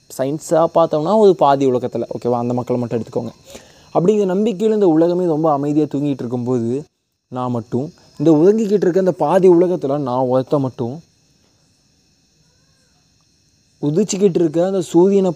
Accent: native